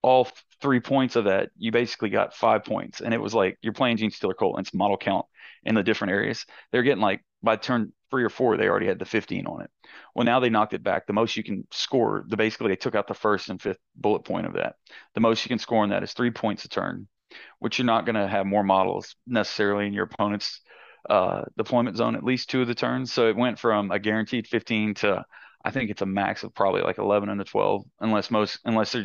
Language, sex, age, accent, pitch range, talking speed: English, male, 30-49, American, 105-125 Hz, 255 wpm